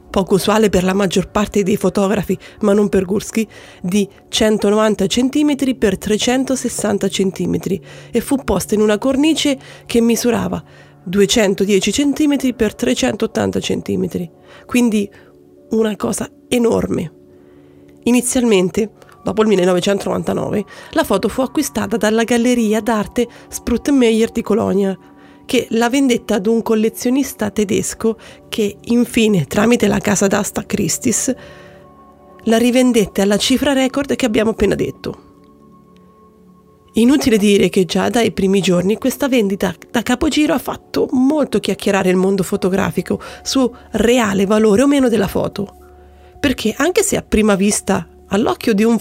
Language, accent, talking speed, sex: Italian, native, 130 wpm, female